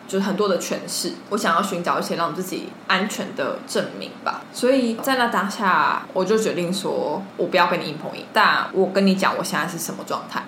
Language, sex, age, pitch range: Chinese, female, 20-39, 170-210 Hz